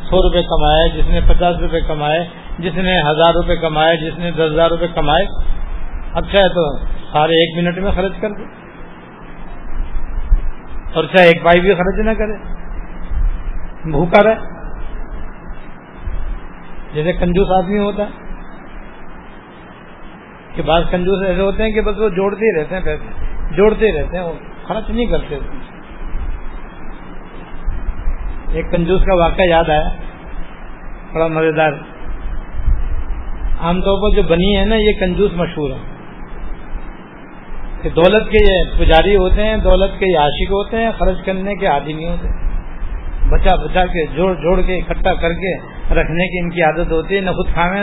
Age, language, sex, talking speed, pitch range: 60-79, Urdu, male, 150 wpm, 155-190 Hz